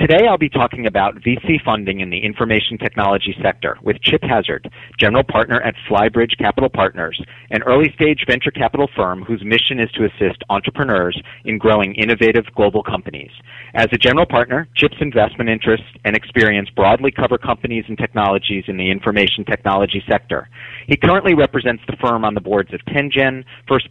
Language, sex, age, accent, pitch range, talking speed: English, male, 40-59, American, 100-130 Hz, 170 wpm